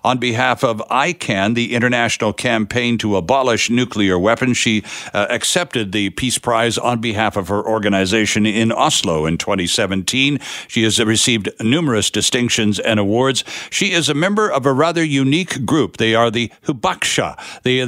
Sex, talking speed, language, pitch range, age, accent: male, 160 wpm, English, 110-145 Hz, 60-79, American